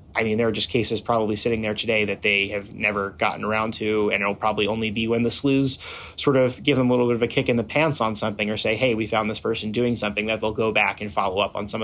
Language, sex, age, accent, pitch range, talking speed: English, male, 30-49, American, 105-125 Hz, 295 wpm